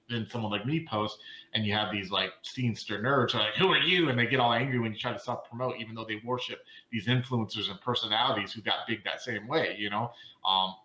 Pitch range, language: 110-145 Hz, English